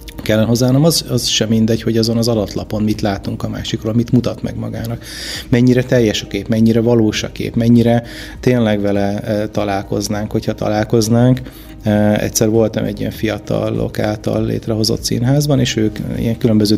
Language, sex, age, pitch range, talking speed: Hungarian, male, 30-49, 105-120 Hz, 155 wpm